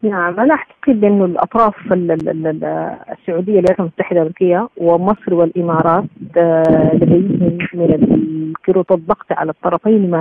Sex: female